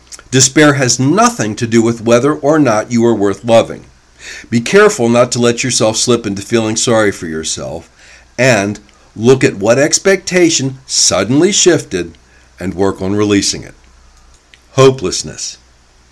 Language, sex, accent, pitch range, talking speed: English, male, American, 80-130 Hz, 140 wpm